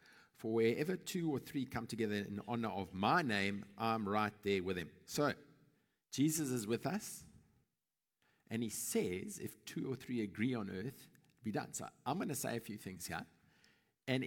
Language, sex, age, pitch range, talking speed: English, male, 50-69, 115-155 Hz, 180 wpm